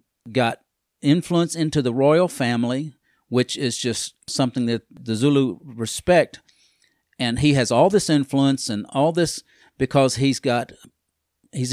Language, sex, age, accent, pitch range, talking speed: English, male, 50-69, American, 115-140 Hz, 140 wpm